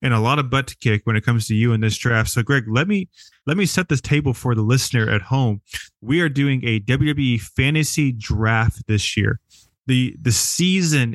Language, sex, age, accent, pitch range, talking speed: English, male, 20-39, American, 115-145 Hz, 220 wpm